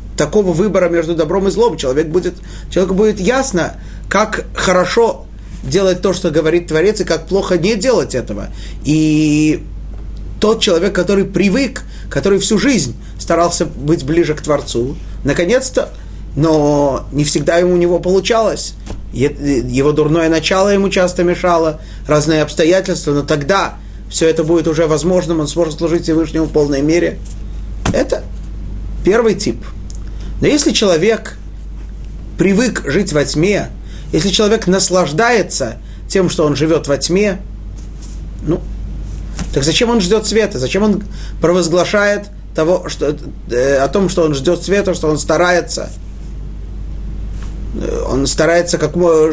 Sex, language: male, Russian